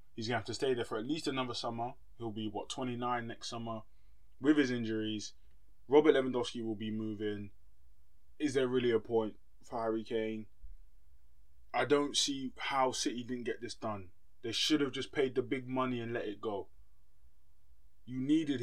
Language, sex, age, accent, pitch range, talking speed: English, male, 20-39, British, 105-130 Hz, 185 wpm